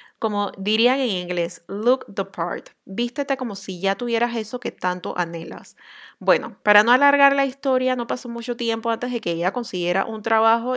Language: Spanish